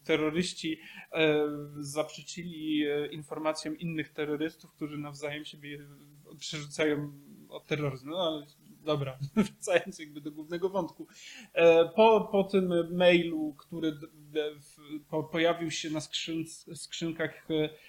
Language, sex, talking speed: Polish, male, 95 wpm